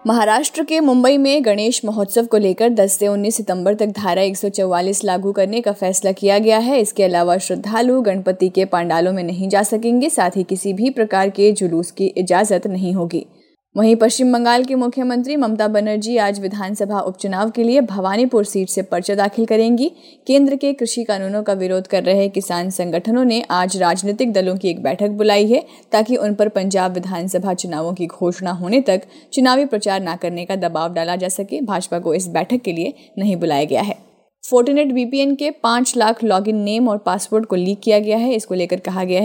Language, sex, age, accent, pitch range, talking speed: Hindi, female, 20-39, native, 190-235 Hz, 195 wpm